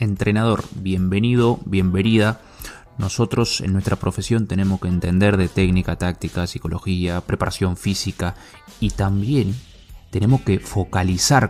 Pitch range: 95-120 Hz